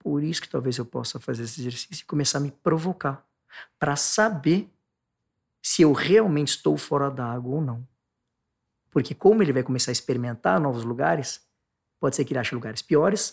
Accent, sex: Brazilian, male